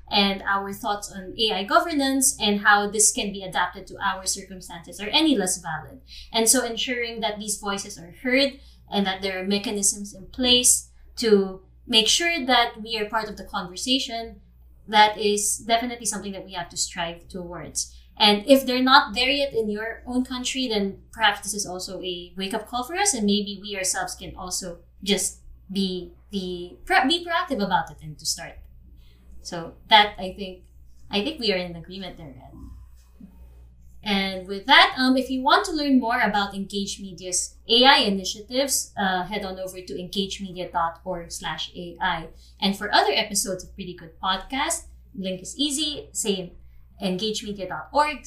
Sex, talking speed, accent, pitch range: female, 170 wpm, Filipino, 175-225 Hz